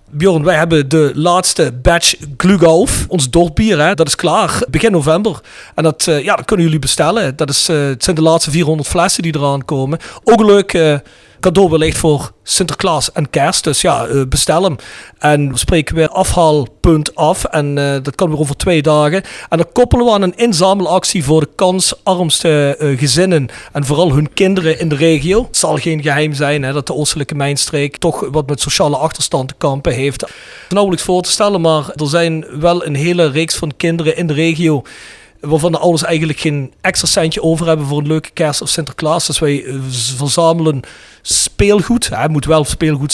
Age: 40-59